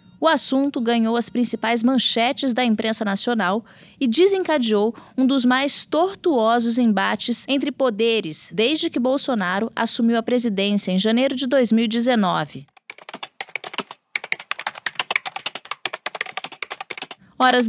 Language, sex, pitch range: Portuguese, female, 215-275 Hz